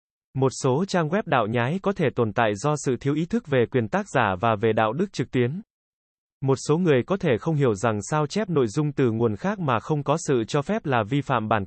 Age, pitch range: 20-39, 120-160 Hz